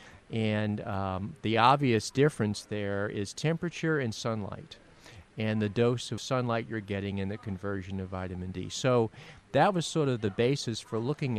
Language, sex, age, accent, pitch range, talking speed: English, male, 50-69, American, 100-125 Hz, 170 wpm